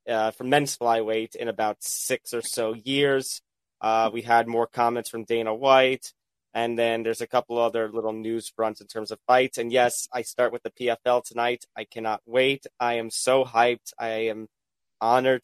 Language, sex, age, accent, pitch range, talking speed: English, male, 20-39, American, 115-130 Hz, 190 wpm